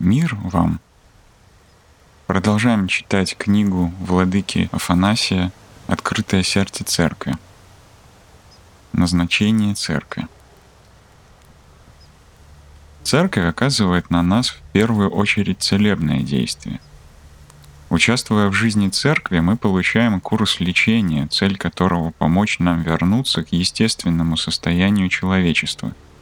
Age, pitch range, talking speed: 30-49, 80-105 Hz, 85 wpm